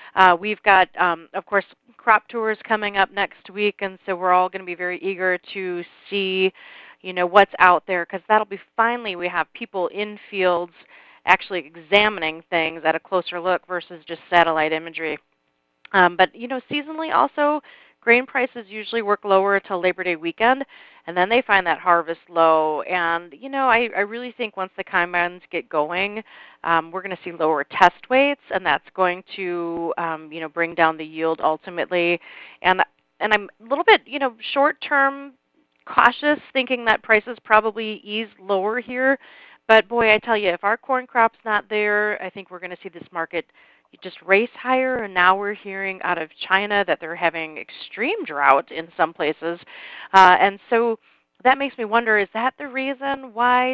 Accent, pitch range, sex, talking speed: American, 170-225 Hz, female, 190 wpm